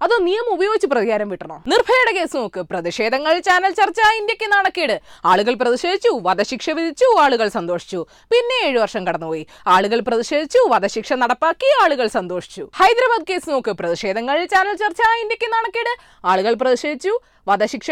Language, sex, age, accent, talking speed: Malayalam, female, 20-39, native, 135 wpm